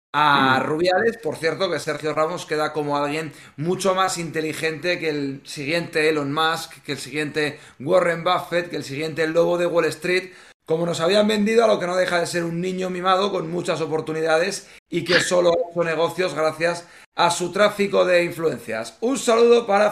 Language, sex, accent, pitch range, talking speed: Spanish, male, Spanish, 155-185 Hz, 185 wpm